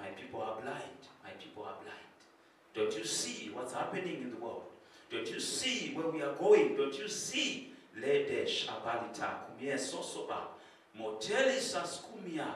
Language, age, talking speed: English, 50-69, 155 wpm